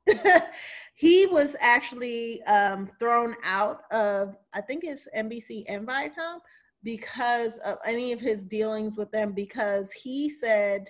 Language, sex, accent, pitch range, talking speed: English, female, American, 210-260 Hz, 130 wpm